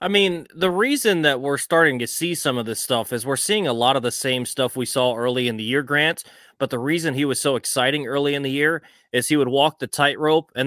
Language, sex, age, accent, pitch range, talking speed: English, male, 20-39, American, 120-140 Hz, 265 wpm